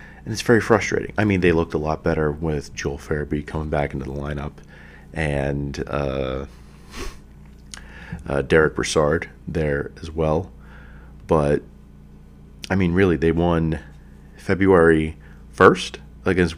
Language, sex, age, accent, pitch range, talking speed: English, male, 40-59, American, 70-90 Hz, 130 wpm